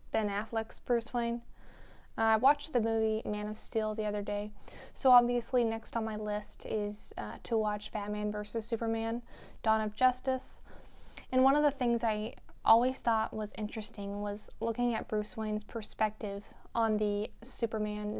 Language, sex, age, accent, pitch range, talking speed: English, female, 10-29, American, 210-230 Hz, 165 wpm